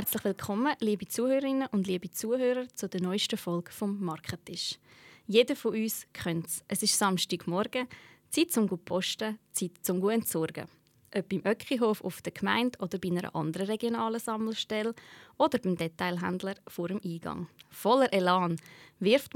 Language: German